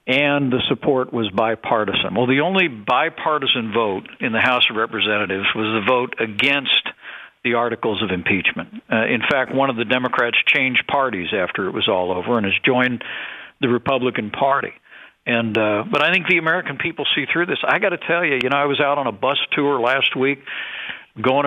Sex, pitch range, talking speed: male, 120-140 Hz, 200 wpm